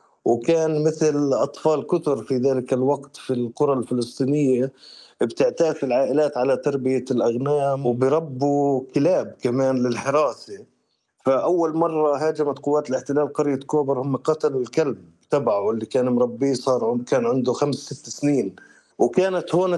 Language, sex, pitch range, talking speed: Arabic, male, 125-150 Hz, 125 wpm